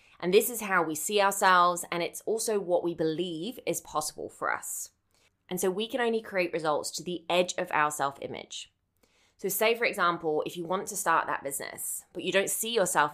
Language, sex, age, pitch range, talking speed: English, female, 20-39, 155-195 Hz, 210 wpm